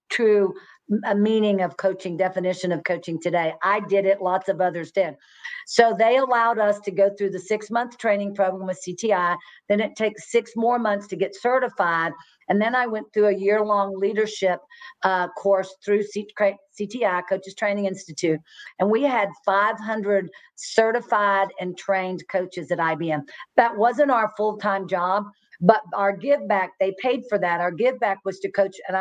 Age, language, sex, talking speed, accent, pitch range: 50-69, English, female, 175 wpm, American, 185-215 Hz